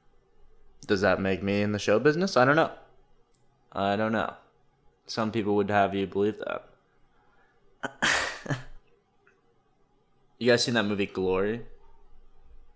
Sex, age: male, 20-39